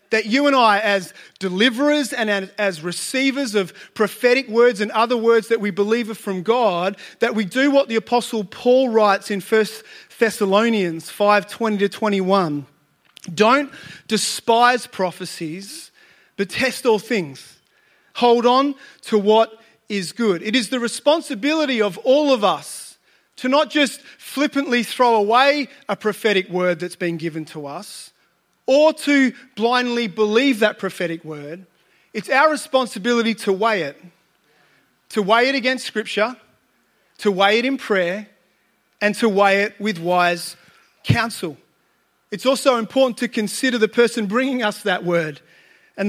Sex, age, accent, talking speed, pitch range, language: male, 30-49, Australian, 145 wpm, 200-245 Hz, English